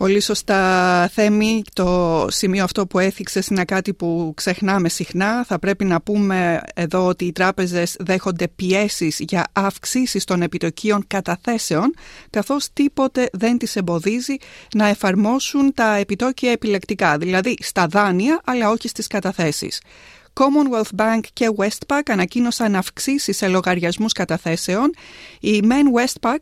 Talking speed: 125 wpm